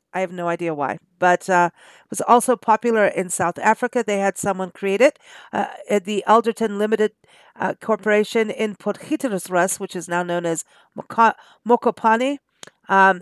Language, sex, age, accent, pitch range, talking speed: English, female, 50-69, American, 180-225 Hz, 165 wpm